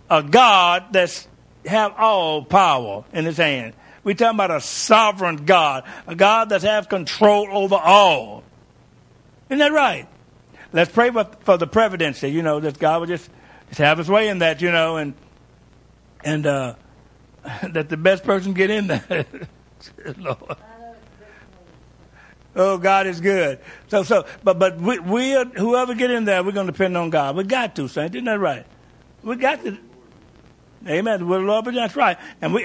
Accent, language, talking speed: American, English, 175 wpm